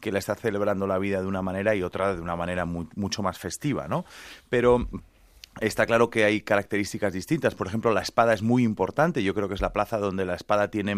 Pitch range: 100-130 Hz